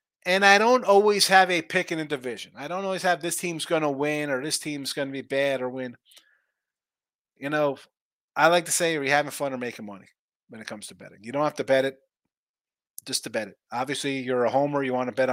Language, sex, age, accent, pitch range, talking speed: English, male, 30-49, American, 135-175 Hz, 250 wpm